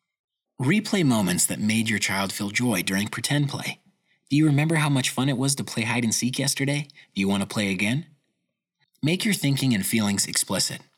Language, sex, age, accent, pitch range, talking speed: English, male, 30-49, American, 110-150 Hz, 190 wpm